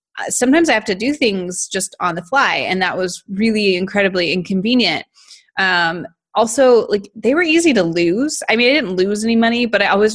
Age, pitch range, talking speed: 20-39, 190-245 Hz, 200 wpm